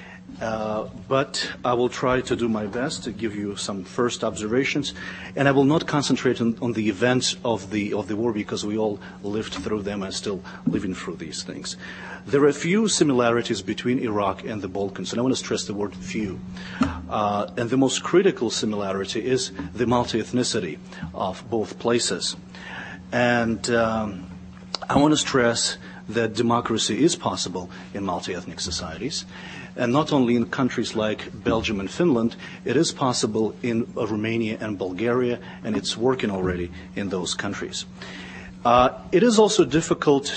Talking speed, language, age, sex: 170 wpm, English, 40-59, male